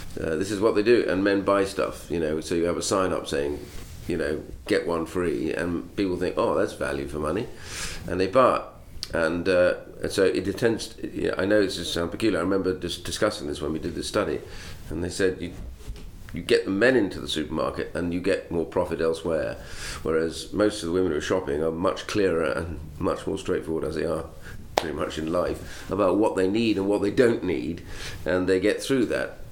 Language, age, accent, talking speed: English, 40-59, British, 220 wpm